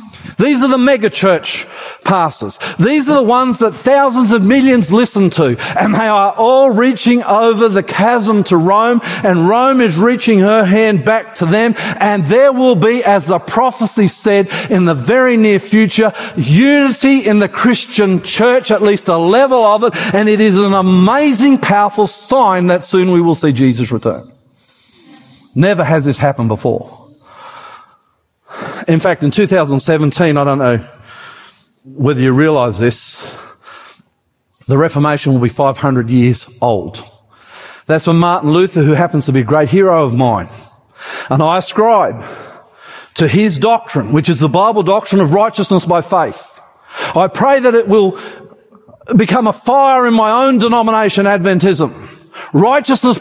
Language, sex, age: English, male, 50-69